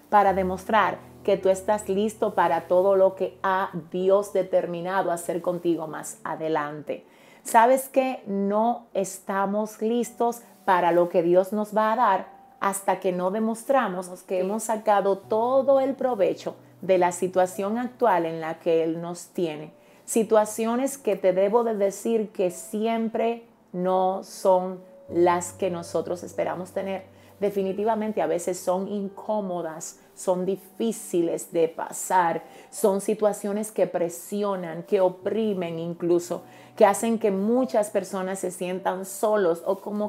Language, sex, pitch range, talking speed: Spanish, female, 185-225 Hz, 135 wpm